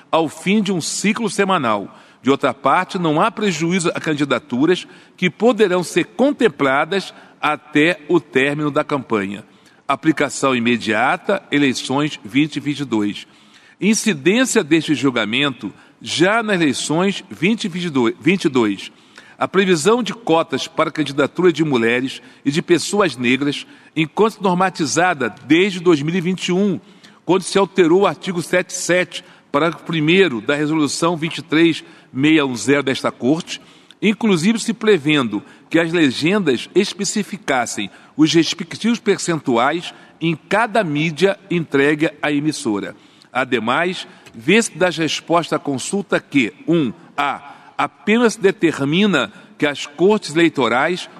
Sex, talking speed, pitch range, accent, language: male, 110 wpm, 145-195 Hz, Brazilian, Portuguese